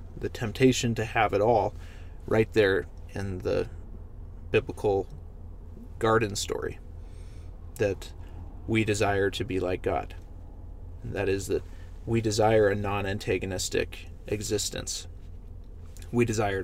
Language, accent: English, American